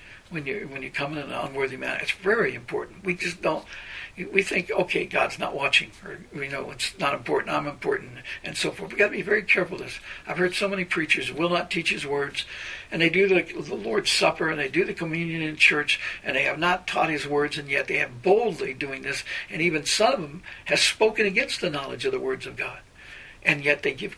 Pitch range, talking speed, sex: 160-205 Hz, 240 wpm, male